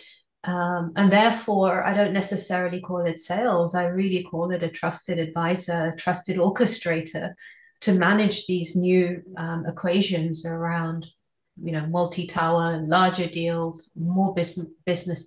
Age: 30-49